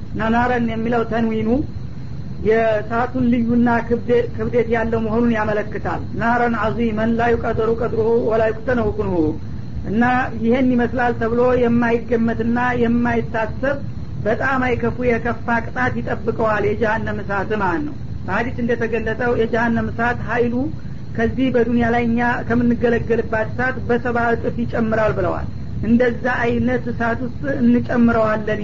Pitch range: 225-240 Hz